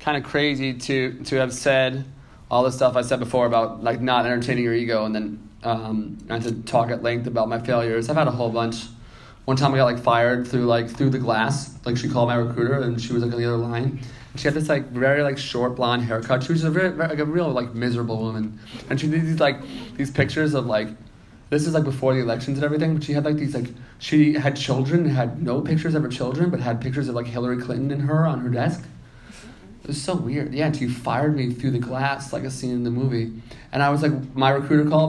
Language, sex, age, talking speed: English, male, 20-39, 250 wpm